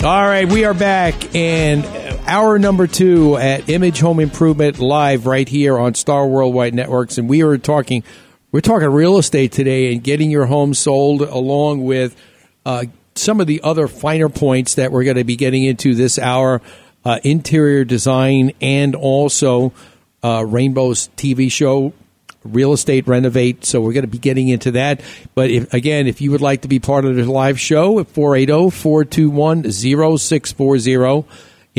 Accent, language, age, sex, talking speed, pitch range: American, English, 50-69, male, 165 wpm, 125-150 Hz